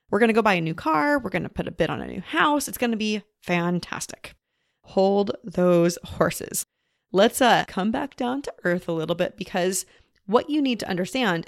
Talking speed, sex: 205 wpm, female